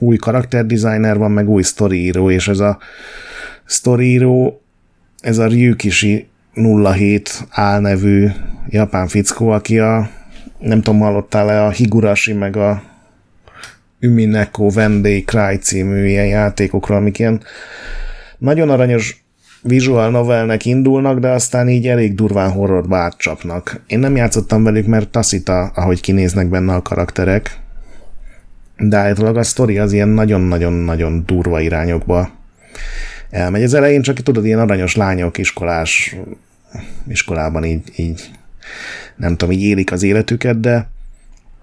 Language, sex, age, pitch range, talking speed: Hungarian, male, 30-49, 95-110 Hz, 125 wpm